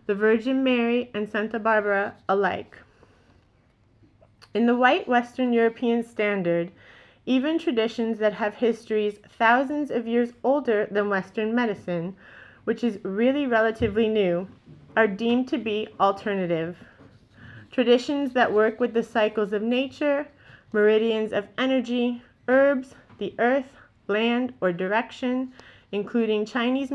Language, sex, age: English, female, 30-49